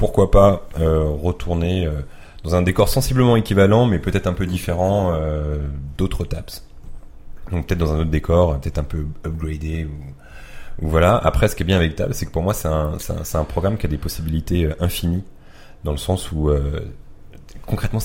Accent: French